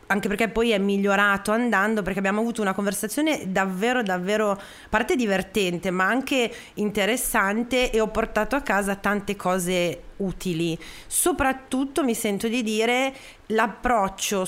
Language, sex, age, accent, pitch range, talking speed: Italian, female, 30-49, native, 170-220 Hz, 135 wpm